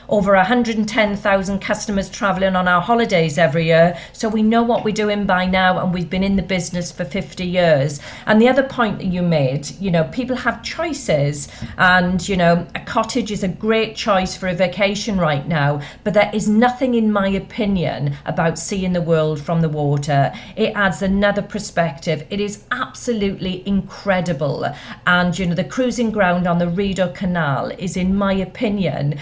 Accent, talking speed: British, 180 wpm